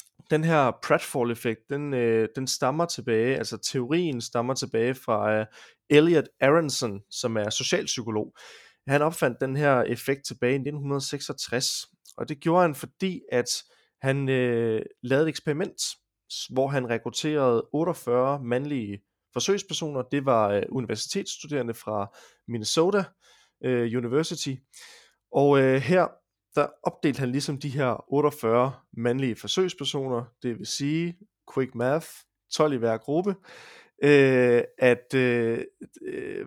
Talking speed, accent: 115 wpm, native